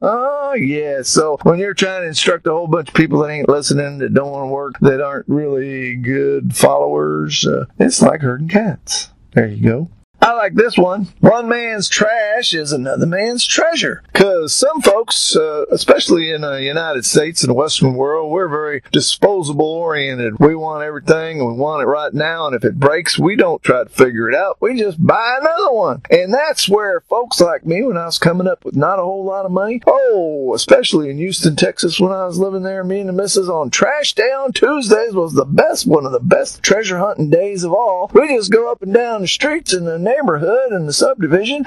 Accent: American